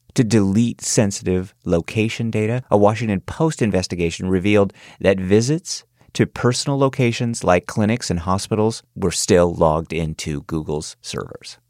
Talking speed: 130 wpm